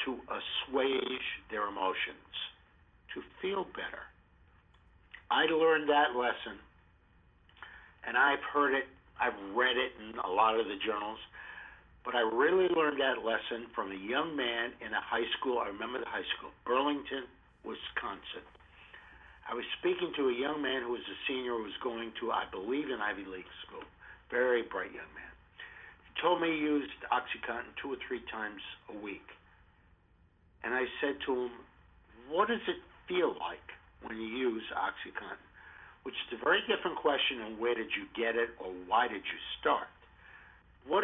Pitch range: 110-150 Hz